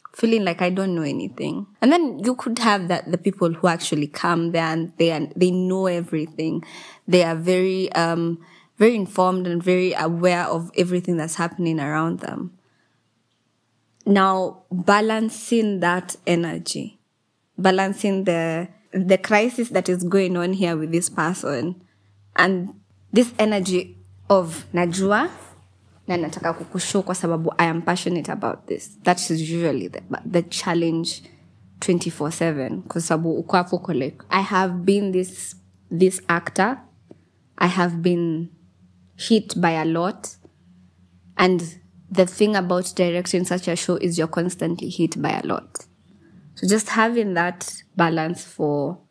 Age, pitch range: 20-39, 165-190 Hz